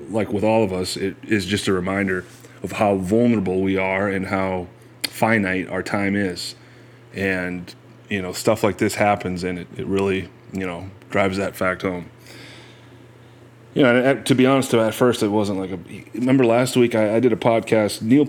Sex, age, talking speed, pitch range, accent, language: male, 30-49, 195 wpm, 95-125 Hz, American, English